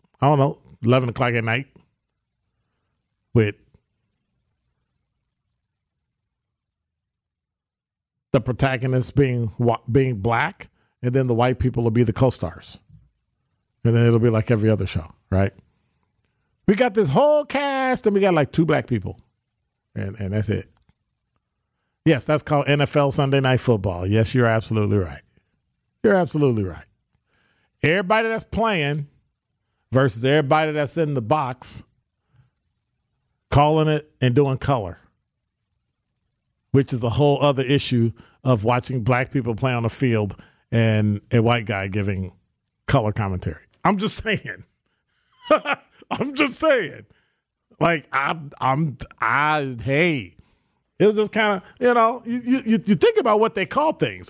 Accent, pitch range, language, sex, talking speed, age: American, 110-155 Hz, English, male, 135 wpm, 40-59